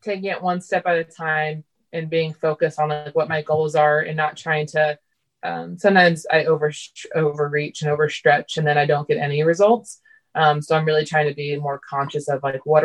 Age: 20-39